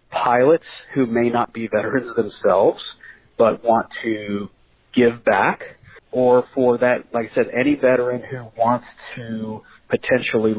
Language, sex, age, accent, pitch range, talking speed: English, male, 50-69, American, 110-130 Hz, 135 wpm